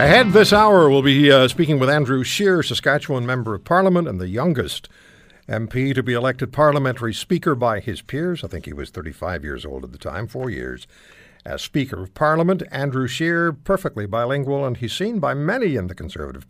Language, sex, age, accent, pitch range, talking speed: English, male, 60-79, American, 95-150 Hz, 195 wpm